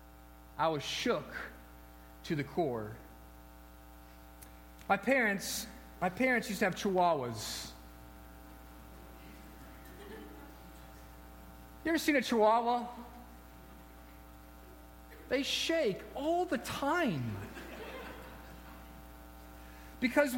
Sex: male